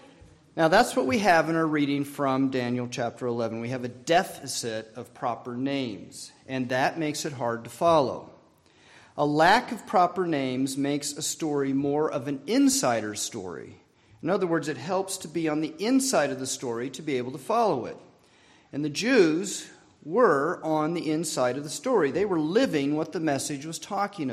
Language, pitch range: English, 130-170 Hz